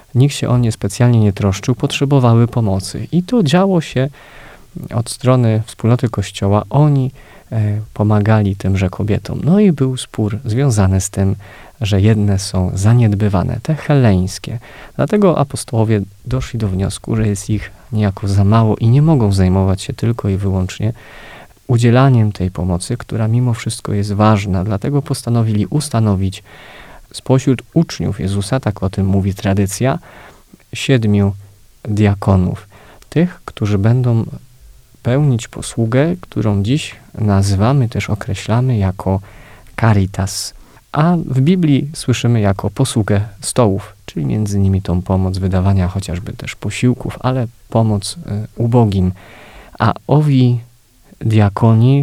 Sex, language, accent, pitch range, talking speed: male, Polish, native, 100-125 Hz, 125 wpm